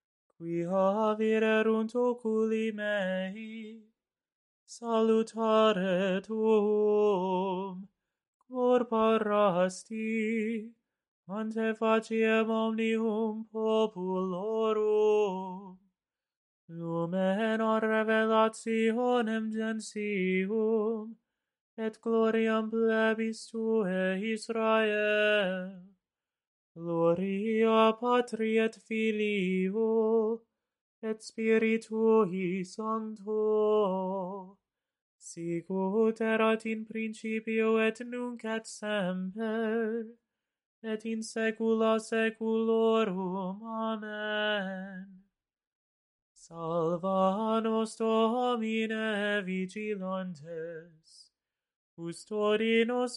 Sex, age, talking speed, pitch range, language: male, 20-39, 50 wpm, 195-225 Hz, English